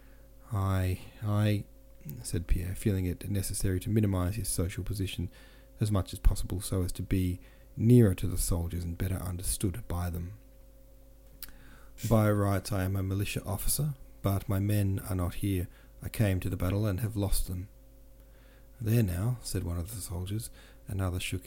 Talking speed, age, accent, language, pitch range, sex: 170 wpm, 30-49, Australian, English, 95-130 Hz, male